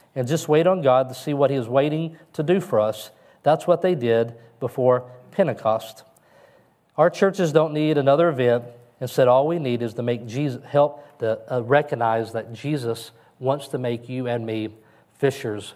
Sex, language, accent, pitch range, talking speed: male, English, American, 120-155 Hz, 180 wpm